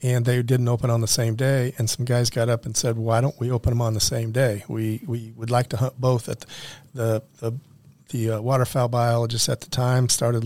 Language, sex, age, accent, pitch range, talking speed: English, male, 50-69, American, 115-135 Hz, 235 wpm